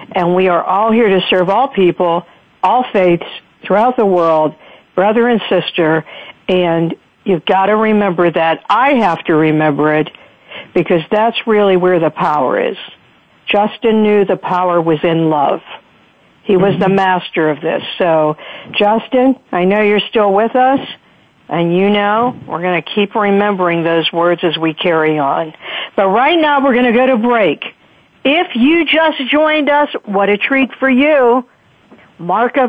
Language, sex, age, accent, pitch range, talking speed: English, female, 60-79, American, 175-240 Hz, 165 wpm